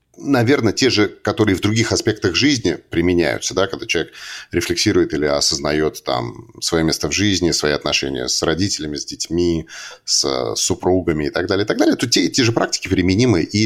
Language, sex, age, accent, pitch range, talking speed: Russian, male, 30-49, native, 85-110 Hz, 180 wpm